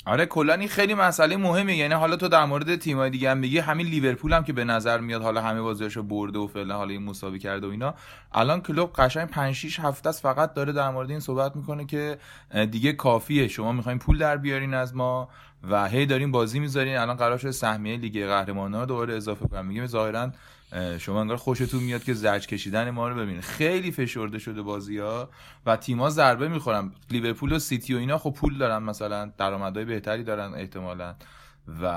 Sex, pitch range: male, 105-140 Hz